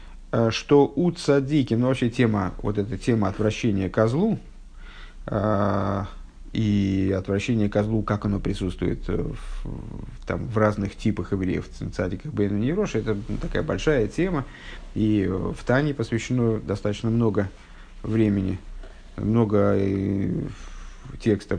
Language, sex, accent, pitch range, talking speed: Russian, male, native, 100-120 Hz, 110 wpm